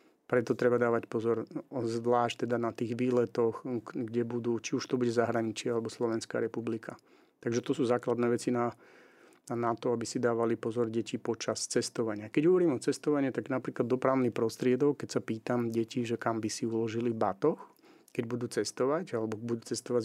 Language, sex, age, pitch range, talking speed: Slovak, male, 40-59, 115-125 Hz, 175 wpm